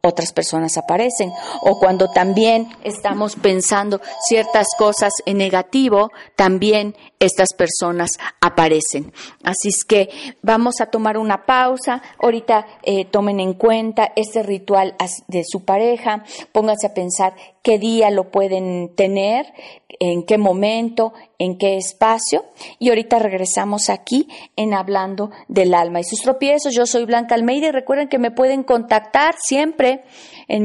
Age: 40-59